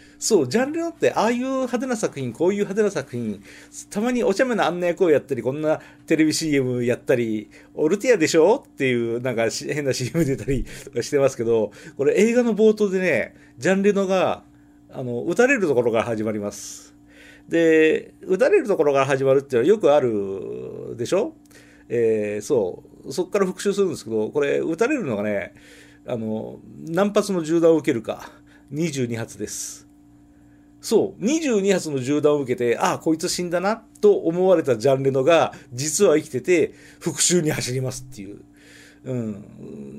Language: Japanese